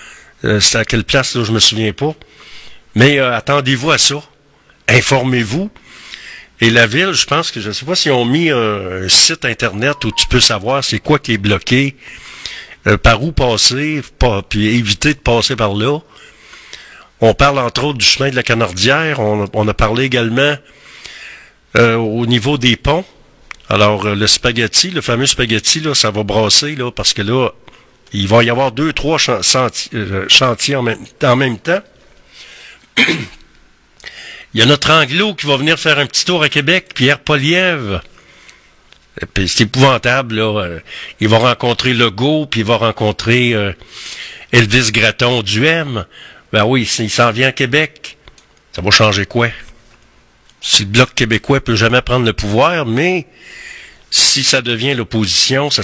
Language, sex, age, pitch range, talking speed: French, male, 50-69, 110-140 Hz, 165 wpm